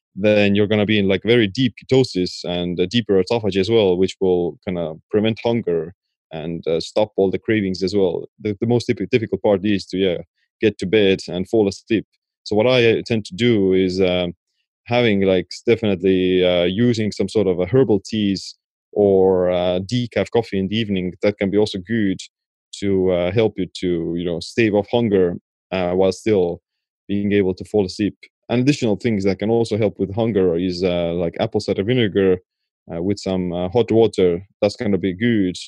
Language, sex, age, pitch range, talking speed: English, male, 20-39, 90-105 Hz, 200 wpm